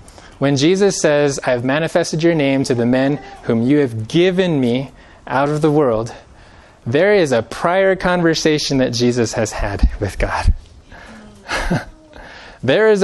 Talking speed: 150 wpm